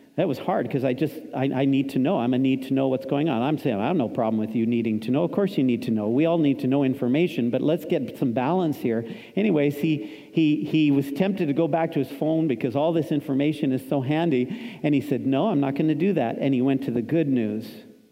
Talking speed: 275 wpm